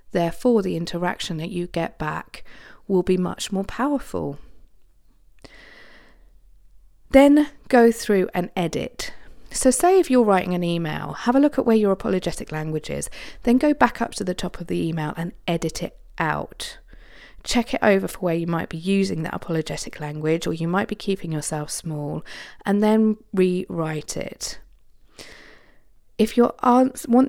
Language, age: English, 40-59